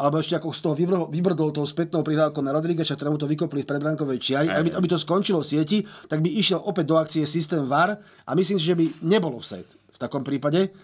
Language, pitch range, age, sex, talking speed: Slovak, 155-190 Hz, 30-49, male, 220 wpm